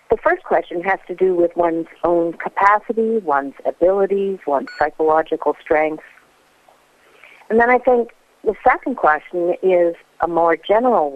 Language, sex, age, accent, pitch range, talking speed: English, female, 50-69, American, 155-185 Hz, 140 wpm